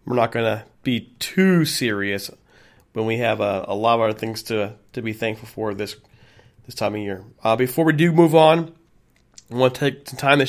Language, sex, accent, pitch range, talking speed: English, male, American, 125-170 Hz, 225 wpm